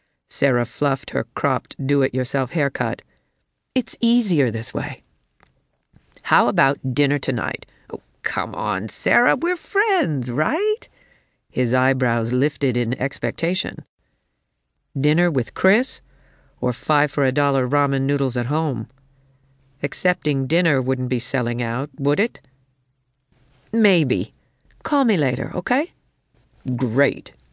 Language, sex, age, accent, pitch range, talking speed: English, female, 50-69, American, 125-165 Hz, 105 wpm